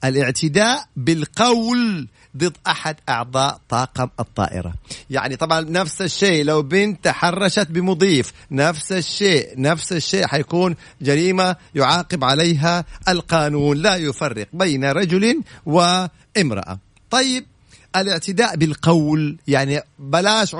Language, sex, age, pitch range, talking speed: Arabic, male, 50-69, 135-185 Hz, 100 wpm